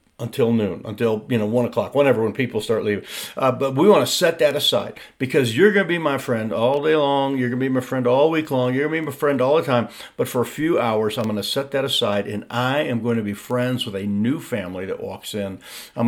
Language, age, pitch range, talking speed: English, 50-69, 115-135 Hz, 275 wpm